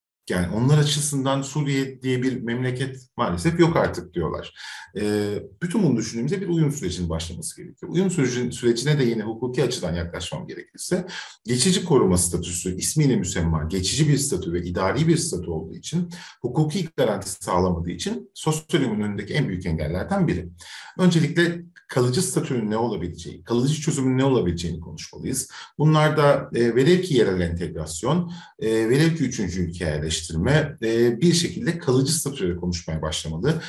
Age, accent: 50-69, native